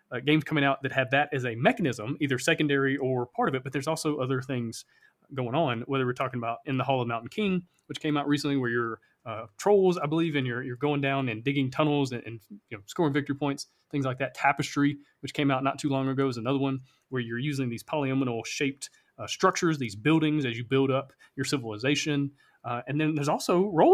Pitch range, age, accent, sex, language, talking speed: 125-150 Hz, 30-49, American, male, English, 235 wpm